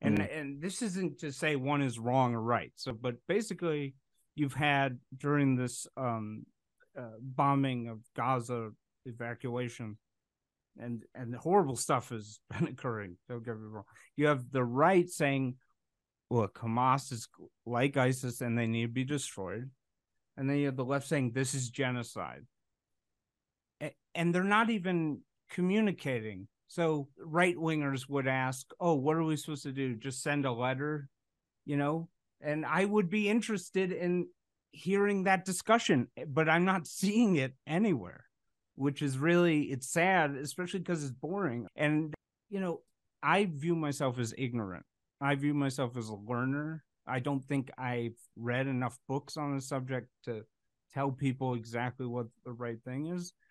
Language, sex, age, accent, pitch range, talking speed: English, male, 50-69, American, 125-160 Hz, 160 wpm